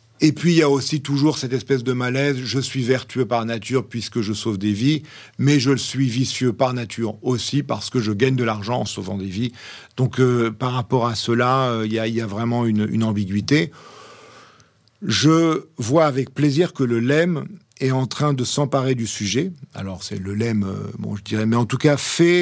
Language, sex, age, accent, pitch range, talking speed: French, male, 50-69, French, 115-145 Hz, 220 wpm